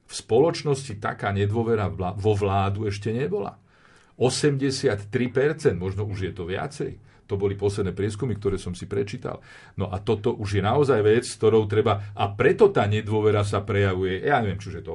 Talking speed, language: 170 wpm, Slovak